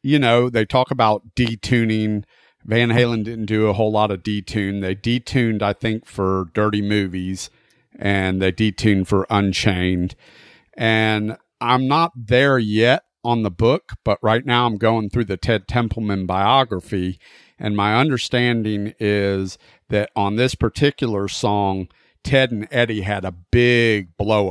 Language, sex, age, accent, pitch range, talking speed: English, male, 50-69, American, 100-115 Hz, 150 wpm